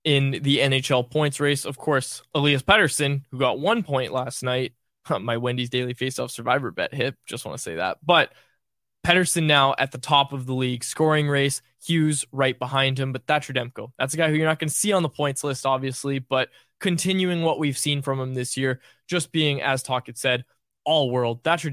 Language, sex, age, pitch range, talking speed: English, male, 20-39, 135-175 Hz, 215 wpm